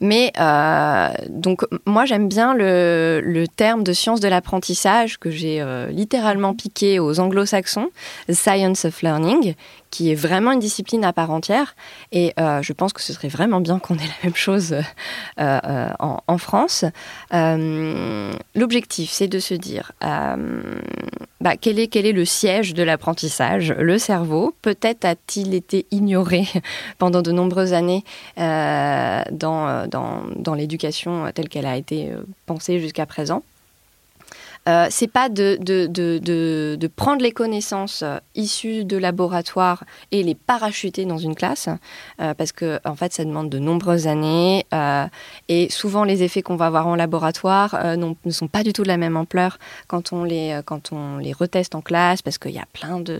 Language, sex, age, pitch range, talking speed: French, female, 20-39, 165-200 Hz, 180 wpm